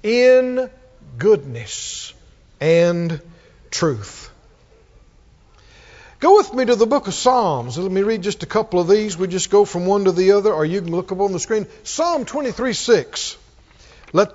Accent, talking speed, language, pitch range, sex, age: American, 165 wpm, English, 190-240 Hz, male, 50-69